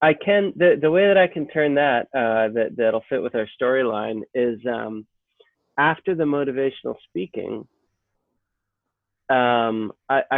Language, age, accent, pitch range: English, 20-39, American, 115-155 Hz